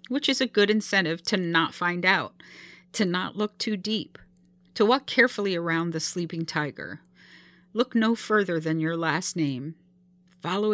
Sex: female